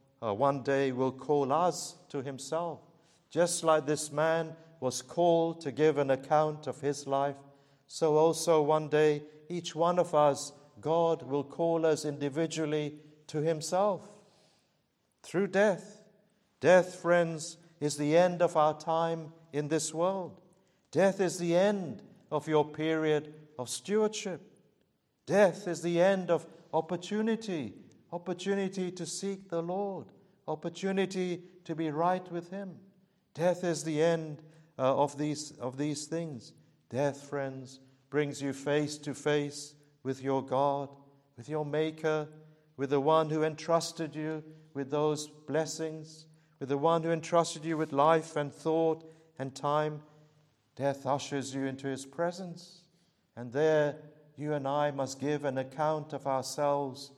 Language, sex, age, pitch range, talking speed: English, male, 50-69, 145-170 Hz, 140 wpm